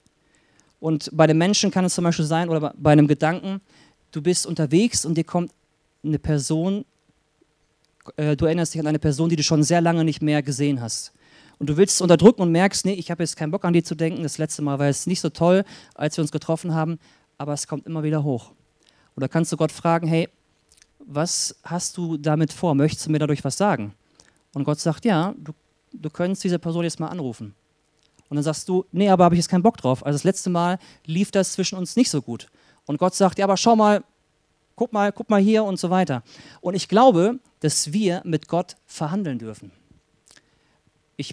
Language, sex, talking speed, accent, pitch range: German, male, 220 wpm, German, 150-180 Hz